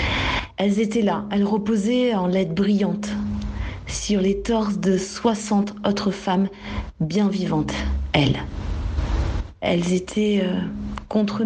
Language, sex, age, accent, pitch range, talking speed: French, female, 40-59, French, 165-210 Hz, 115 wpm